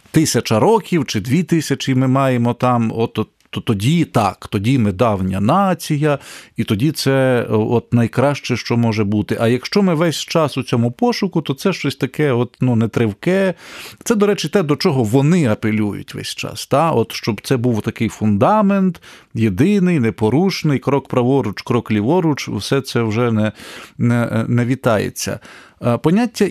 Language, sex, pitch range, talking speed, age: Ukrainian, male, 115-155 Hz, 155 wpm, 40-59